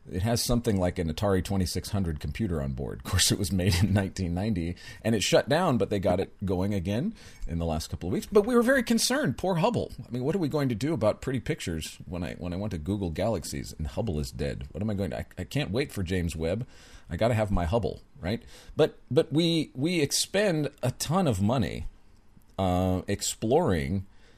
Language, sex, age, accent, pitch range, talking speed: English, male, 40-59, American, 85-135 Hz, 230 wpm